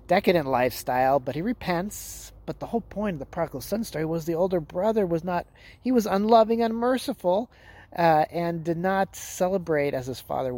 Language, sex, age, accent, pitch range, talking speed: English, male, 30-49, American, 120-170 Hz, 180 wpm